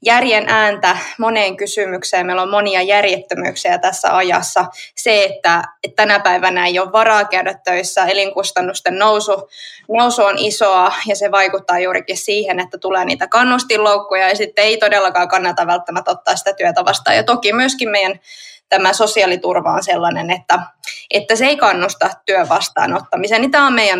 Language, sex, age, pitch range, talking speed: Finnish, female, 20-39, 190-220 Hz, 155 wpm